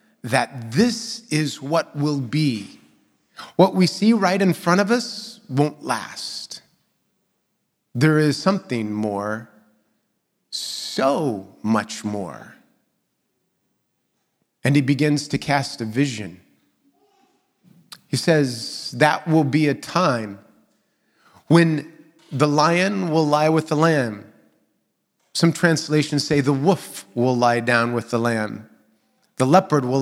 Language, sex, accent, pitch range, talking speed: English, male, American, 120-160 Hz, 120 wpm